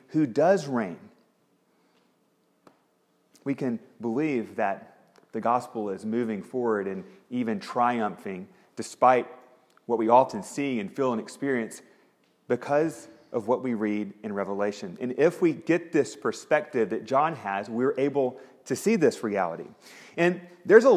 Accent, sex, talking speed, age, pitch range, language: American, male, 140 wpm, 30-49, 130-190 Hz, English